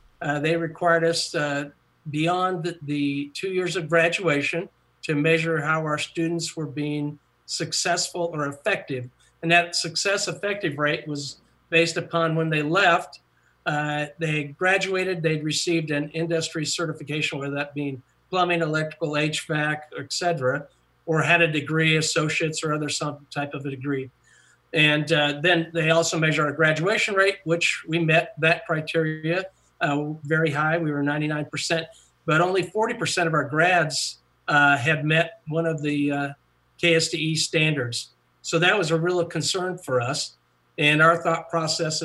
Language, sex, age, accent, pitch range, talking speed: English, male, 50-69, American, 150-170 Hz, 155 wpm